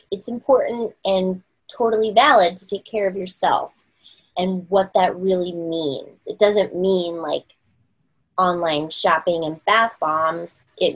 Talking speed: 135 wpm